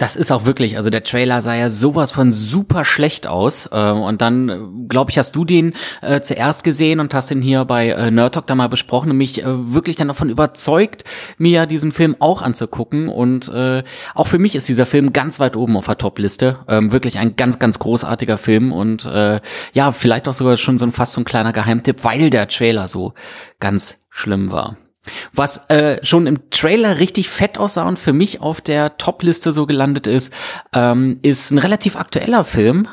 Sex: male